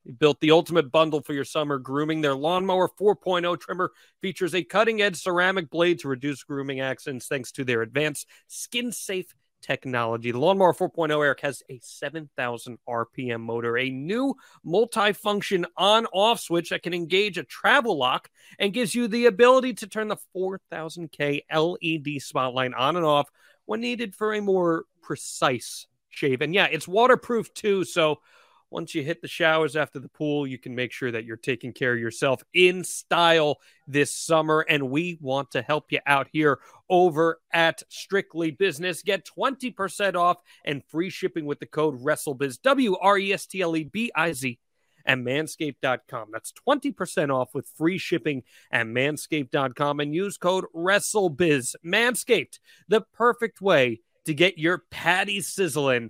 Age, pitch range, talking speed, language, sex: 30-49, 140-190 Hz, 155 wpm, English, male